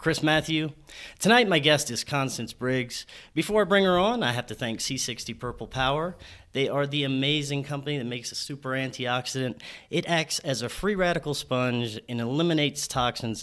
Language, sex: English, male